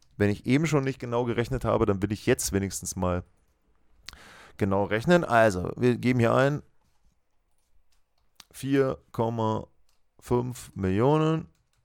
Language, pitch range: German, 100-150 Hz